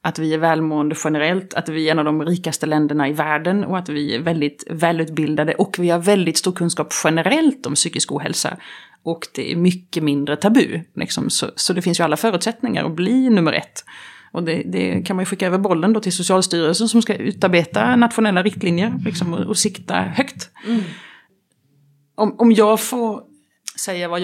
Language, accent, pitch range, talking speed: Swedish, native, 160-210 Hz, 175 wpm